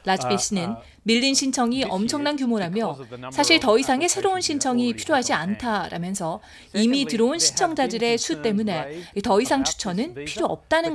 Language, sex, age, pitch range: Korean, female, 30-49, 170-260 Hz